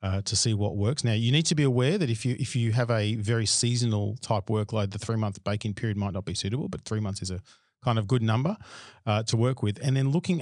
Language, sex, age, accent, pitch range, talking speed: English, male, 40-59, Australian, 105-130 Hz, 270 wpm